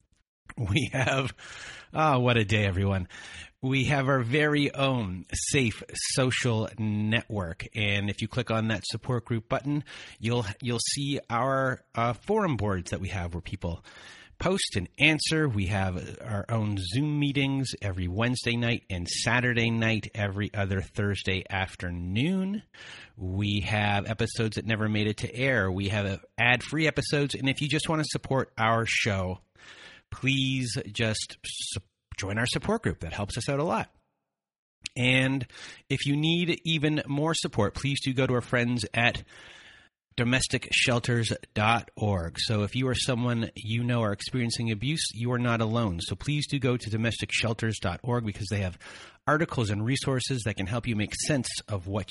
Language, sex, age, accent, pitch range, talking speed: English, male, 30-49, American, 105-135 Hz, 160 wpm